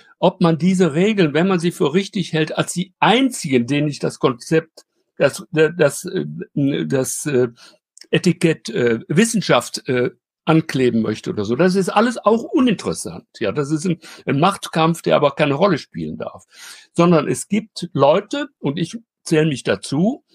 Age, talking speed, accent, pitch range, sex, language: 60-79, 150 wpm, German, 145-185 Hz, male, German